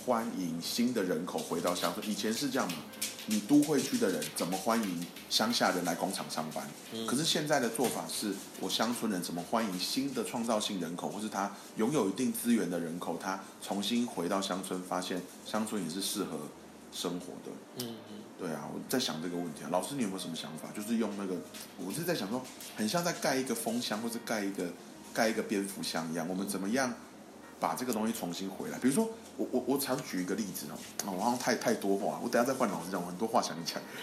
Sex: male